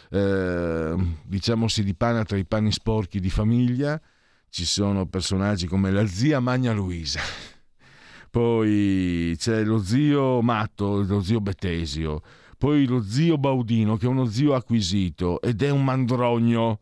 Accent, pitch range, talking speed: native, 90-125 Hz, 140 wpm